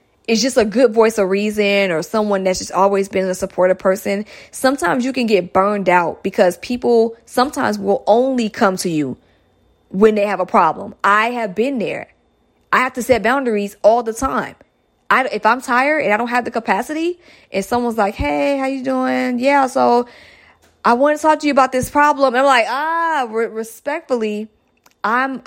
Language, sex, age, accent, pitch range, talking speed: English, female, 20-39, American, 190-240 Hz, 195 wpm